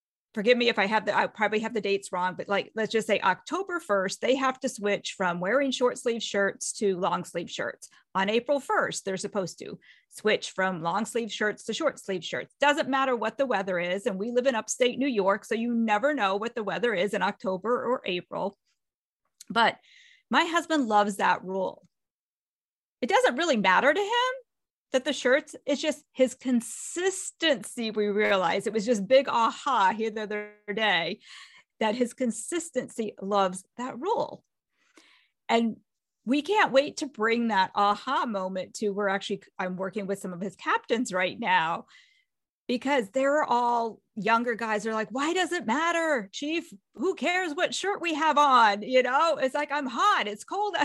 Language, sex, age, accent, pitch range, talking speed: English, female, 40-59, American, 205-285 Hz, 185 wpm